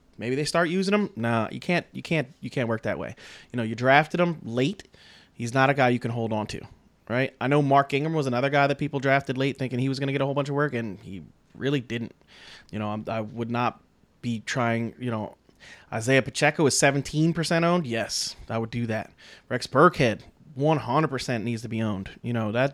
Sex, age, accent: male, 30-49, American